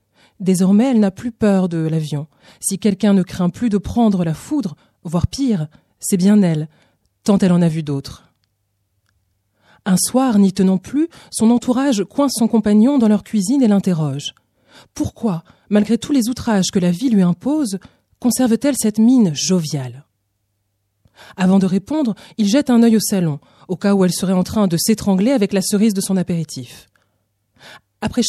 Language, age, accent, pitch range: French, 30-49, French, 160-220 Hz